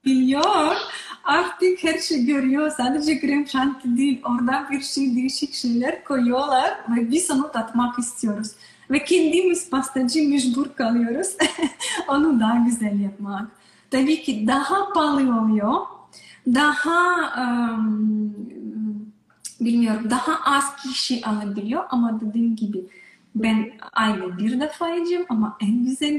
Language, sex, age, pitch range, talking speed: Turkish, female, 20-39, 220-275 Hz, 115 wpm